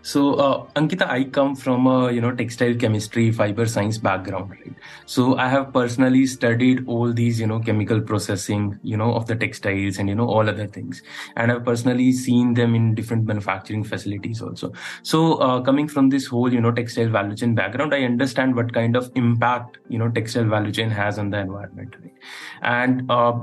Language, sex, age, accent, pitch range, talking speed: English, male, 20-39, Indian, 110-130 Hz, 195 wpm